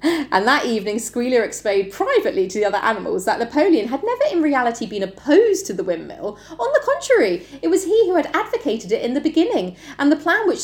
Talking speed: 215 wpm